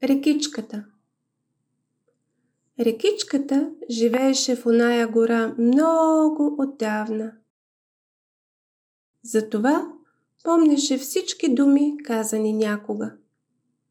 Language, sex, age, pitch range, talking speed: Bulgarian, female, 30-49, 220-295 Hz, 60 wpm